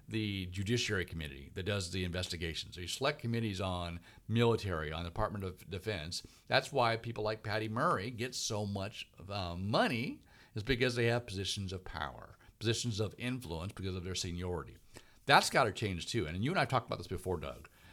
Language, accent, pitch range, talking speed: English, American, 95-120 Hz, 200 wpm